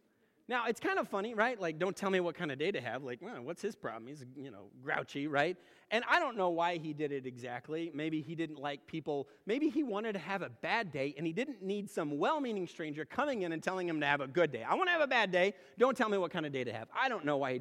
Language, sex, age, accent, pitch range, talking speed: English, male, 30-49, American, 160-230 Hz, 290 wpm